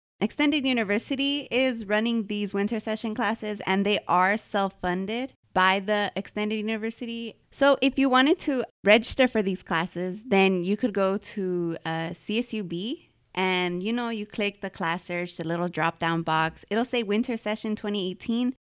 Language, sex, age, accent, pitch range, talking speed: English, female, 20-39, American, 180-230 Hz, 160 wpm